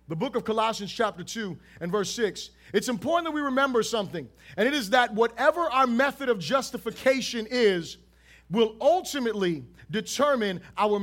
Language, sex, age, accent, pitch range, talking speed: English, male, 30-49, American, 215-275 Hz, 160 wpm